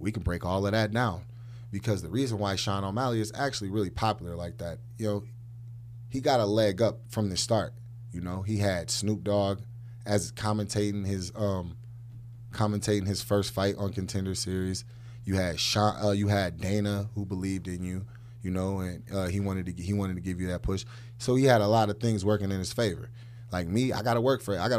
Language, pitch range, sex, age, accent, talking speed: English, 95-120 Hz, male, 30-49, American, 225 wpm